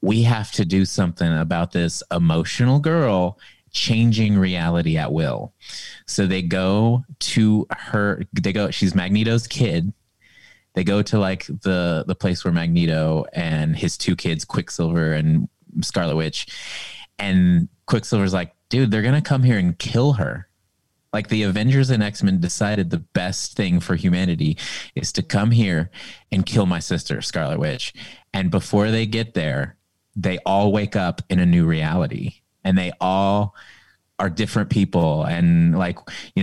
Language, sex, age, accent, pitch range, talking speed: English, male, 30-49, American, 85-110 Hz, 155 wpm